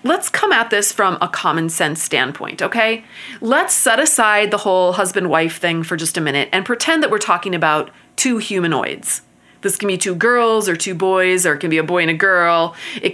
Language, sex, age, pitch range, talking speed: English, female, 30-49, 180-260 Hz, 220 wpm